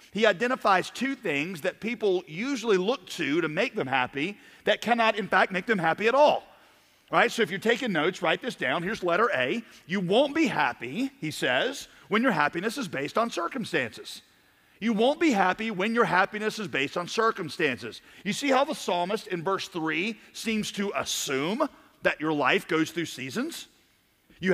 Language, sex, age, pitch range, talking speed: English, male, 40-59, 180-240 Hz, 190 wpm